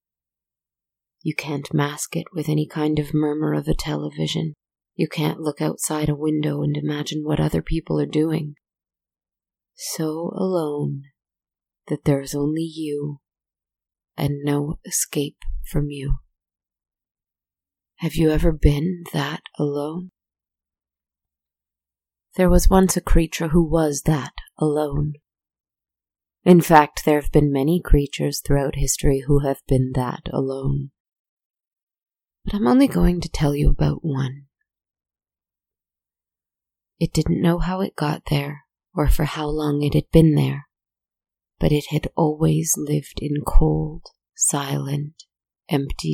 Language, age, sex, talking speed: English, 30-49, female, 130 wpm